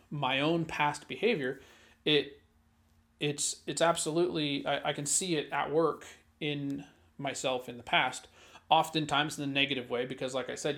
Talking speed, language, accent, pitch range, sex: 160 wpm, English, American, 135-160 Hz, male